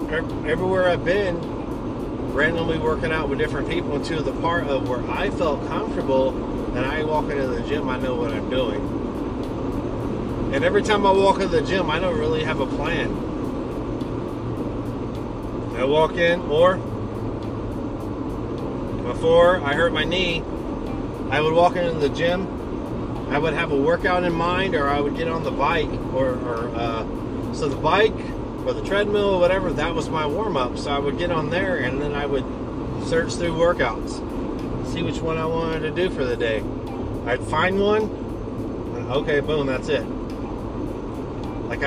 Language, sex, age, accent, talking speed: English, male, 30-49, American, 165 wpm